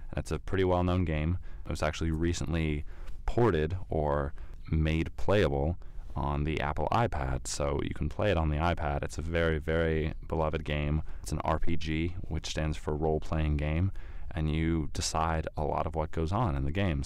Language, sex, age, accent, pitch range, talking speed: English, male, 20-39, American, 75-85 Hz, 180 wpm